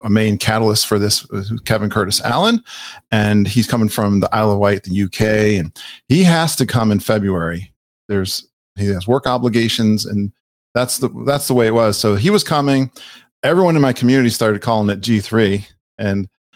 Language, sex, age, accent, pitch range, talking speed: English, male, 40-59, American, 105-125 Hz, 185 wpm